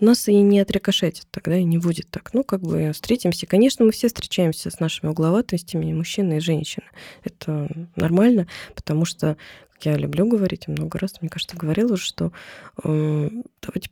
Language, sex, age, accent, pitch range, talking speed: Russian, female, 20-39, native, 155-185 Hz, 175 wpm